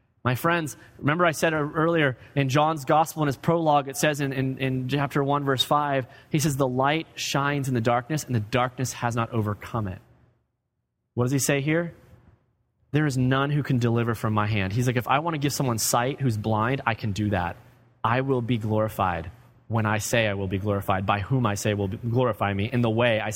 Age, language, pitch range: 30-49, English, 120-165 Hz